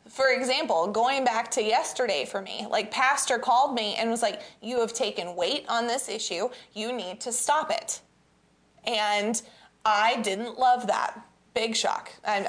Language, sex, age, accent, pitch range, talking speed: English, female, 20-39, American, 225-285 Hz, 170 wpm